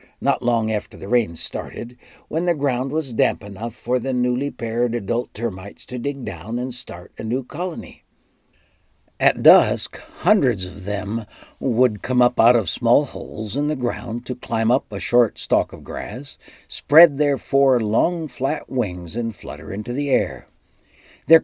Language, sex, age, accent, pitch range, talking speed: English, male, 60-79, American, 105-140 Hz, 170 wpm